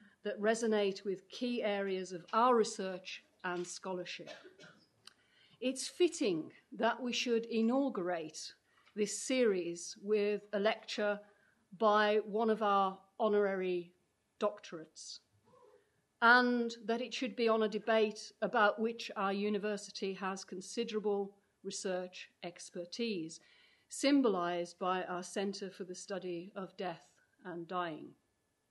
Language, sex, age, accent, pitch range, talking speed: English, female, 50-69, British, 185-230 Hz, 115 wpm